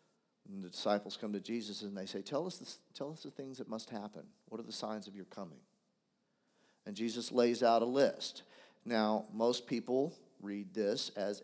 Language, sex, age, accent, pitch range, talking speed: English, male, 50-69, American, 105-140 Hz, 200 wpm